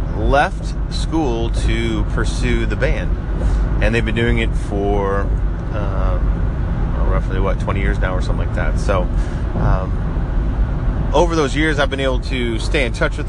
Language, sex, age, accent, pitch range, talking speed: English, male, 30-49, American, 100-120 Hz, 160 wpm